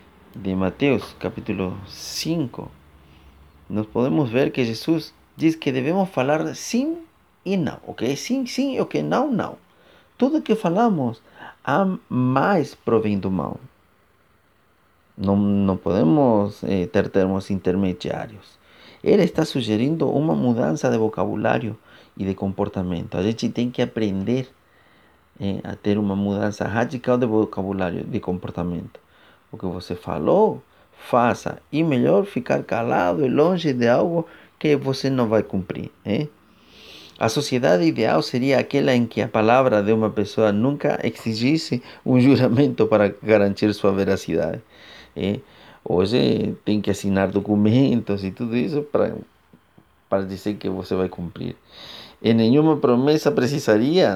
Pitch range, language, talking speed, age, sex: 100-135 Hz, Portuguese, 135 wpm, 30-49, male